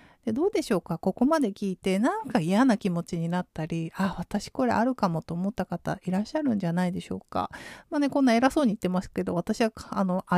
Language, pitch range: Japanese, 190-255 Hz